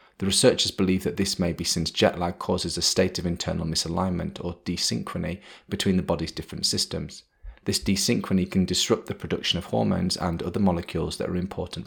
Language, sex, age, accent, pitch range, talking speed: English, male, 30-49, British, 85-95 Hz, 185 wpm